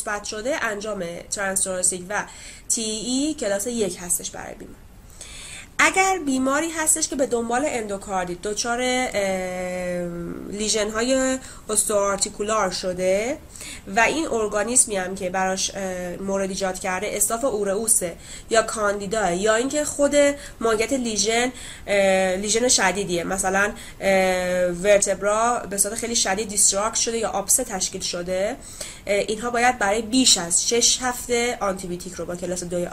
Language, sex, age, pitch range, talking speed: Persian, female, 20-39, 195-255 Hz, 120 wpm